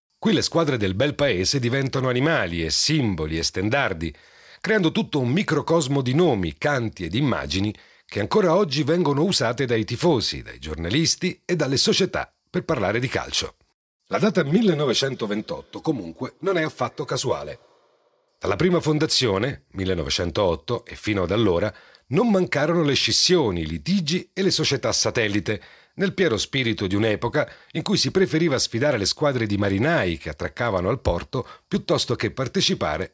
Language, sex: Italian, male